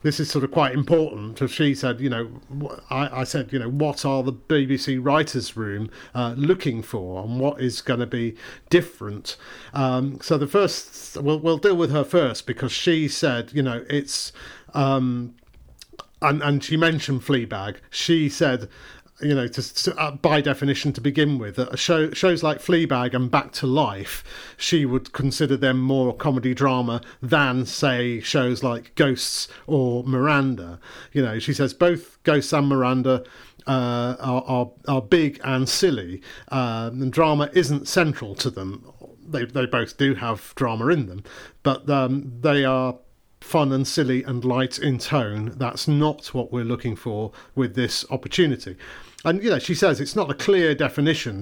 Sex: male